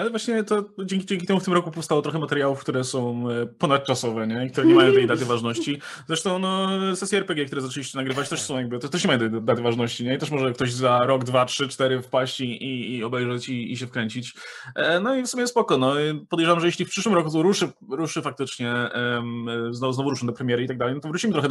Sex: male